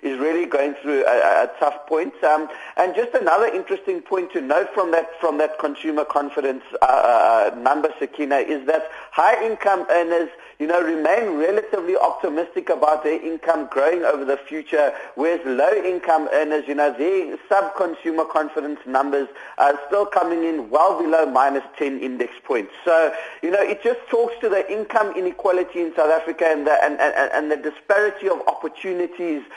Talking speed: 175 wpm